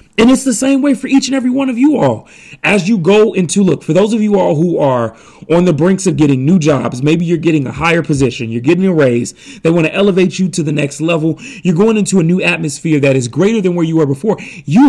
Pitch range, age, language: 150-210 Hz, 30-49, English